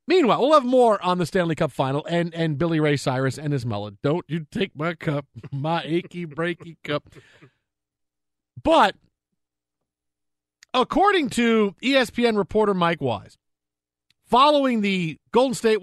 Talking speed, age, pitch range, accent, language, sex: 140 wpm, 50-69, 145-215 Hz, American, English, male